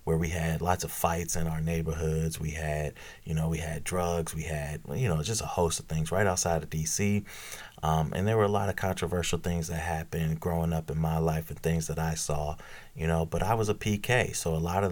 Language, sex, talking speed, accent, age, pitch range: English, male, 245 wpm, American, 30-49, 80-95 Hz